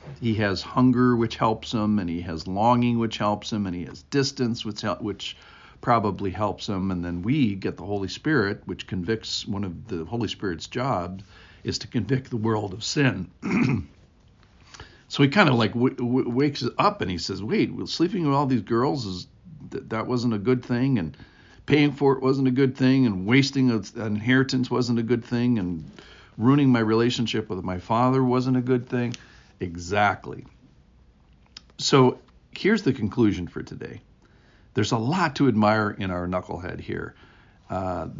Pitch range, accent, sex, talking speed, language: 95-125 Hz, American, male, 180 wpm, English